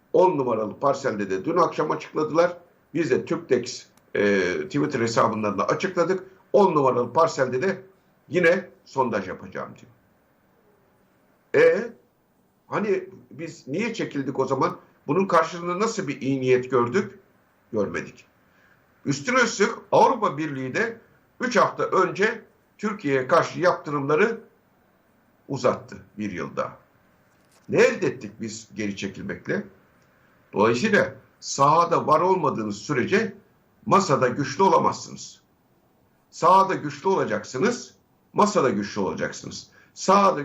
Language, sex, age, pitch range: Turkish, male, 60-79, 130-190 Hz